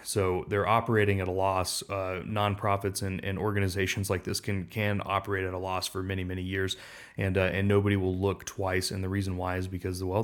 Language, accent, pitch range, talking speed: English, American, 95-105 Hz, 225 wpm